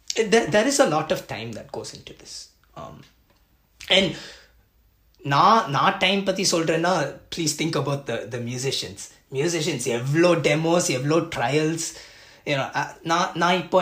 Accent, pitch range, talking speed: native, 140-205 Hz, 150 wpm